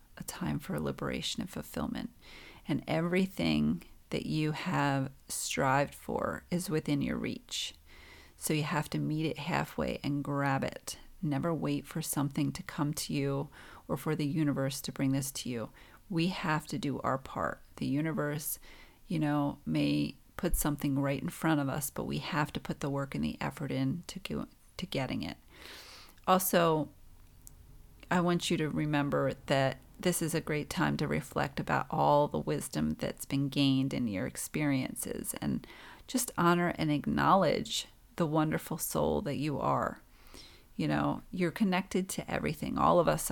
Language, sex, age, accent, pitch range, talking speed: English, female, 40-59, American, 130-165 Hz, 170 wpm